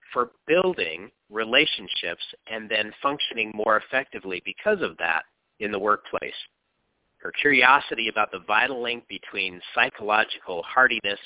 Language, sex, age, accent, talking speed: English, male, 50-69, American, 125 wpm